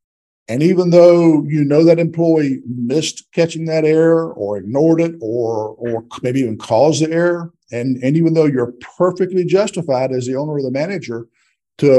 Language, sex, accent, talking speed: English, male, American, 175 wpm